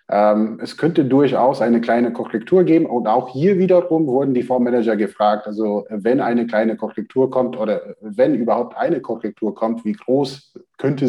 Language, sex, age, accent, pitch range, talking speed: German, male, 30-49, German, 105-130 Hz, 160 wpm